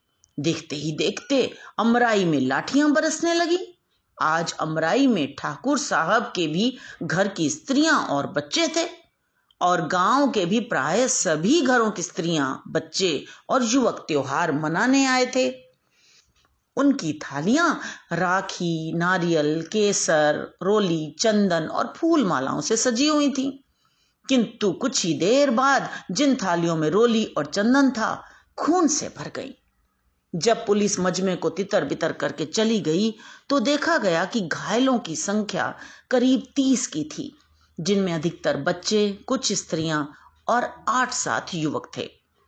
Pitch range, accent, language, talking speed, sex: 170-265 Hz, native, Hindi, 135 wpm, female